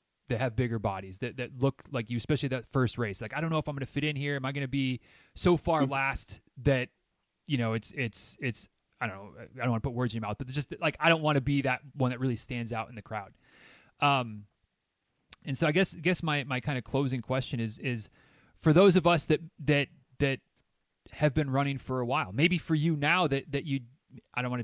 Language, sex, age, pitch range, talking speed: English, male, 30-49, 120-145 Hz, 255 wpm